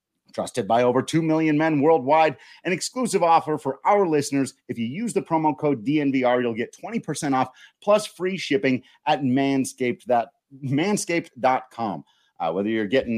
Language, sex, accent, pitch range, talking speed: English, male, American, 125-155 Hz, 160 wpm